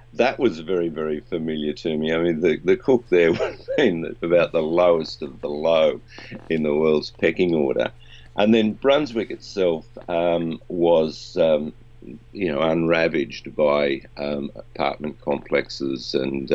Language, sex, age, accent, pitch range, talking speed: English, male, 50-69, Australian, 75-100 Hz, 150 wpm